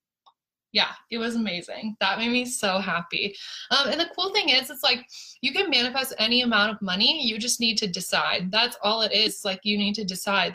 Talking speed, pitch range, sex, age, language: 215 wpm, 210-265 Hz, female, 20-39, English